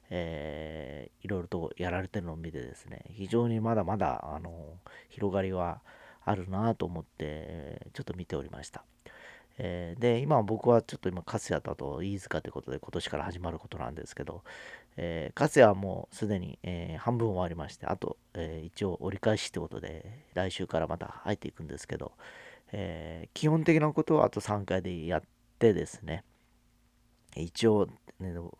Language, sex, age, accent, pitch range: Japanese, male, 40-59, native, 85-110 Hz